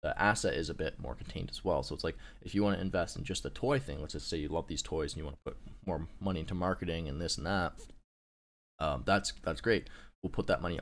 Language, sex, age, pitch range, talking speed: English, male, 20-39, 70-95 Hz, 275 wpm